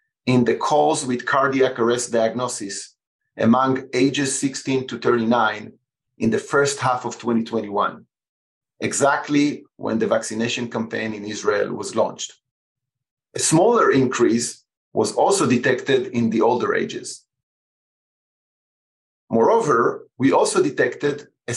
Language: English